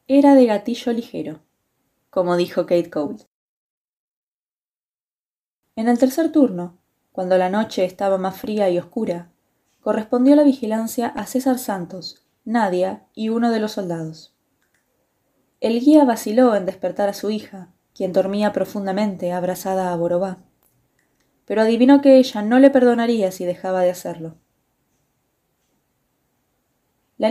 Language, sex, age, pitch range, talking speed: Spanish, female, 20-39, 185-245 Hz, 125 wpm